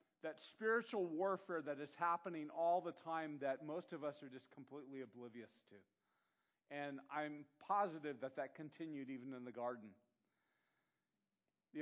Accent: American